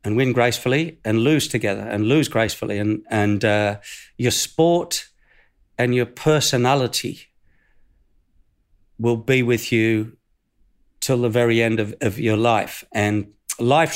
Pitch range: 115-150 Hz